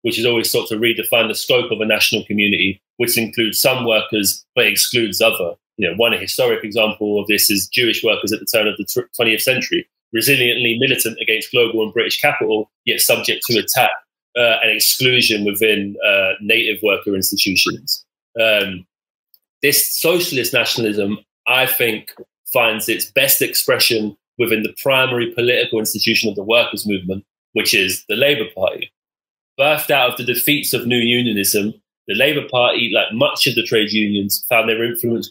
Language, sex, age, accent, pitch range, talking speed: English, male, 30-49, British, 105-130 Hz, 170 wpm